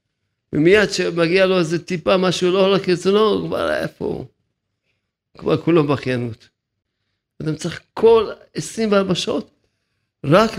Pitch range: 140-185 Hz